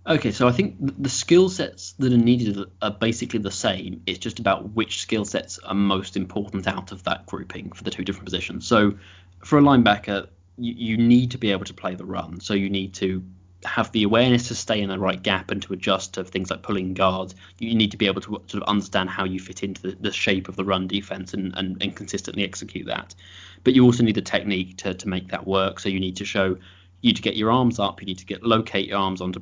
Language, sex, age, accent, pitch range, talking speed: English, male, 20-39, British, 95-105 Hz, 255 wpm